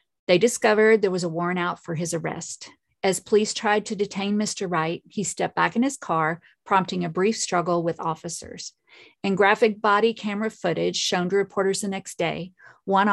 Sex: female